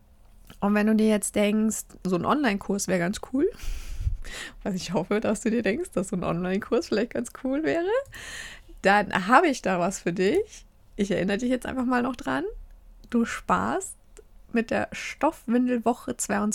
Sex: female